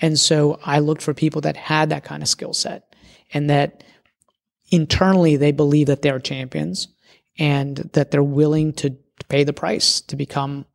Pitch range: 145-170 Hz